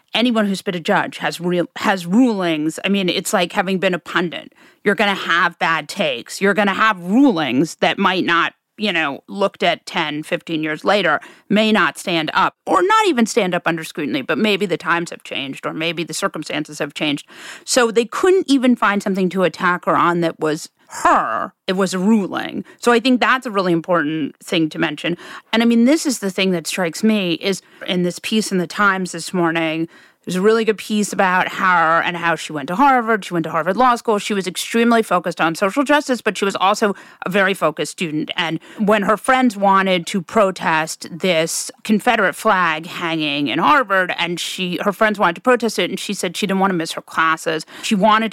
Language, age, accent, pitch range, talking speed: English, 40-59, American, 170-220 Hz, 215 wpm